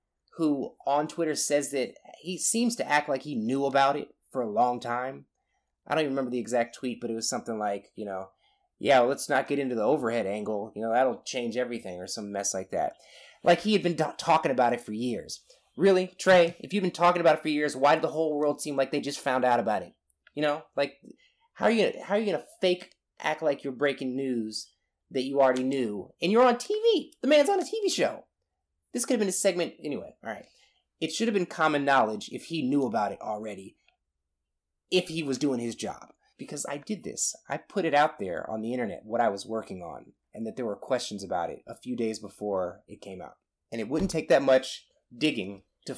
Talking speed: 230 wpm